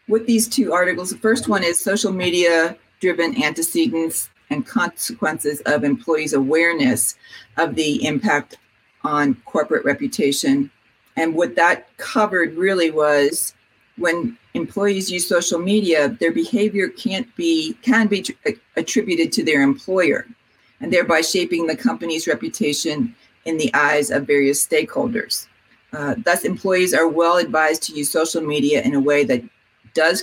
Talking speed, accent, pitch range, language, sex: 140 wpm, American, 150-225 Hz, English, female